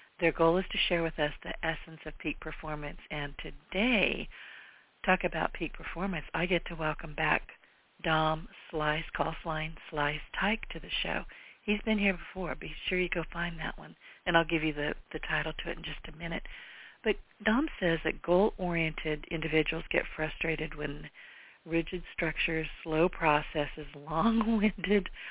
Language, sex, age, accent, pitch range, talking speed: English, female, 50-69, American, 155-180 Hz, 160 wpm